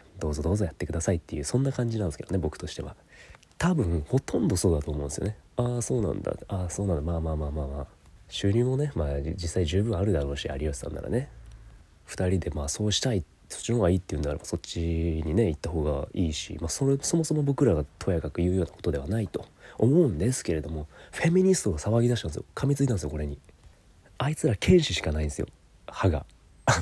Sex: male